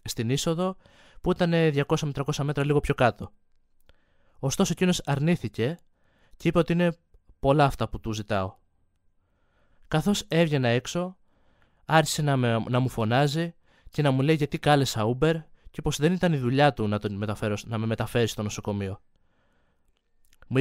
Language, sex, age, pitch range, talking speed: Greek, male, 20-39, 115-150 Hz, 155 wpm